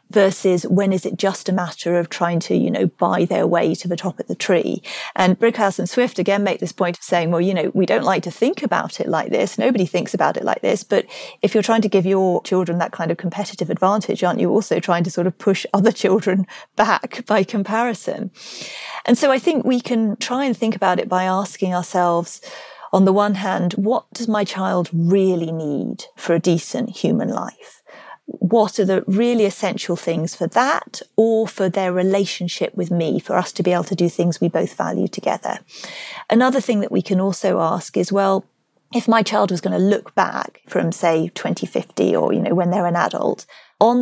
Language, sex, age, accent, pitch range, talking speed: English, female, 40-59, British, 180-215 Hz, 215 wpm